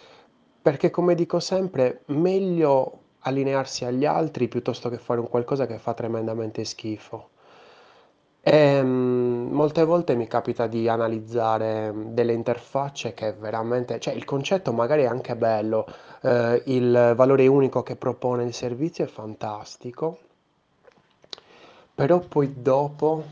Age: 20-39